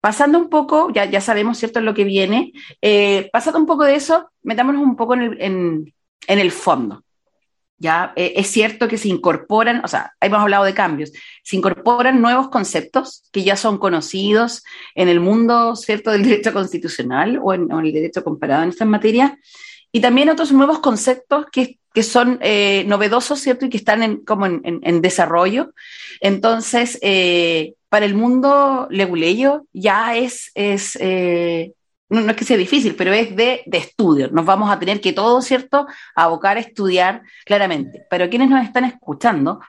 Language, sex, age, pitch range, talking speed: Spanish, female, 40-59, 195-255 Hz, 180 wpm